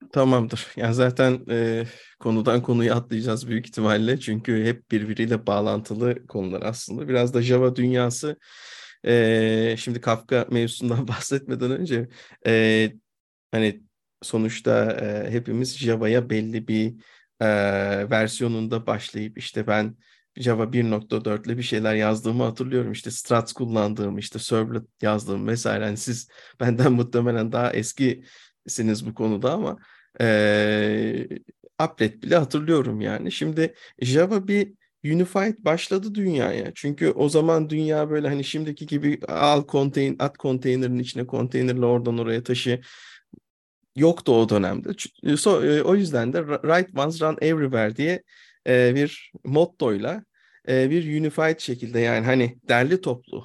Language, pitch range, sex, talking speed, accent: Turkish, 110-140 Hz, male, 120 wpm, native